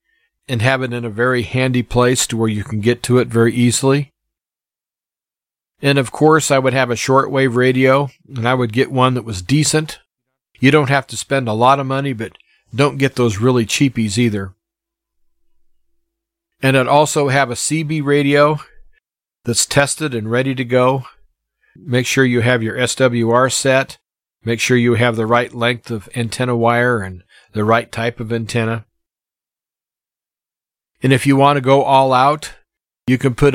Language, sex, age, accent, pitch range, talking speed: English, male, 40-59, American, 120-145 Hz, 175 wpm